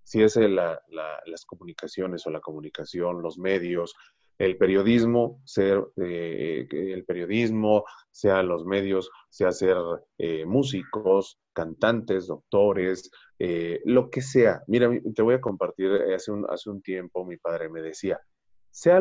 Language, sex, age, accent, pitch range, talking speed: Spanish, male, 30-49, Mexican, 95-135 Hz, 130 wpm